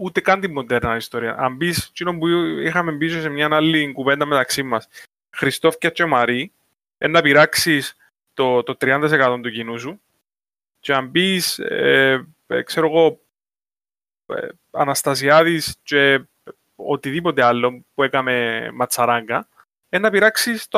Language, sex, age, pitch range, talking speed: Greek, male, 20-39, 135-175 Hz, 120 wpm